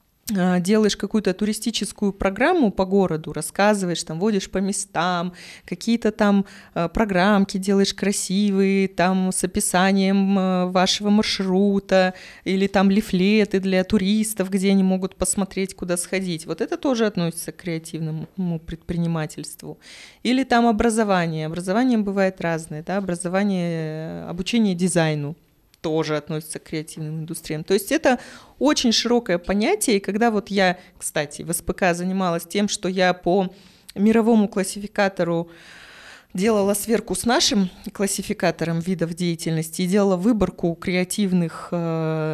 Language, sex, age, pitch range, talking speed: Russian, female, 20-39, 175-205 Hz, 120 wpm